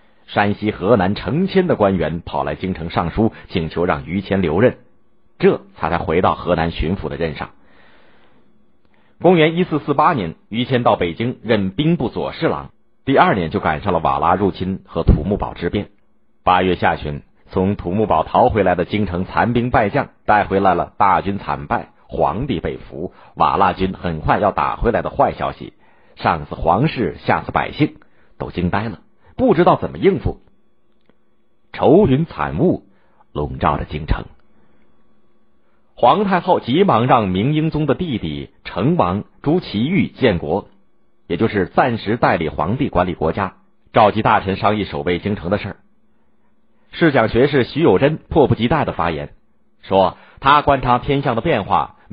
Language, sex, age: Chinese, male, 50-69